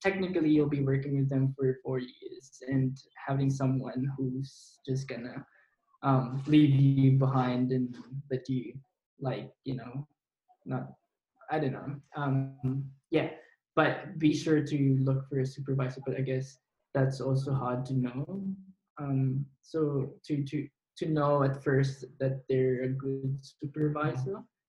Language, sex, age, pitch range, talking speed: English, male, 20-39, 130-145 Hz, 145 wpm